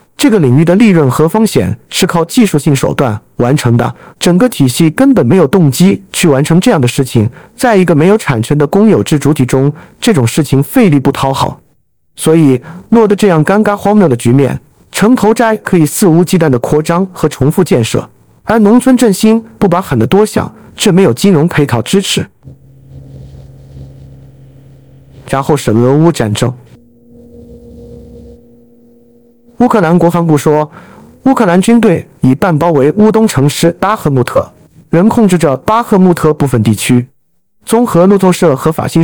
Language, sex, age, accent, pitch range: Chinese, male, 50-69, native, 130-195 Hz